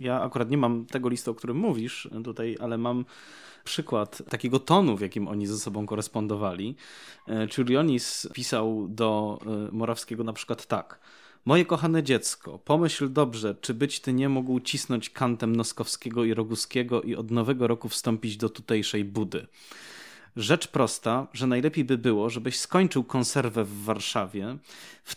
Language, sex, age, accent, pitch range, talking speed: Polish, male, 20-39, native, 115-150 Hz, 150 wpm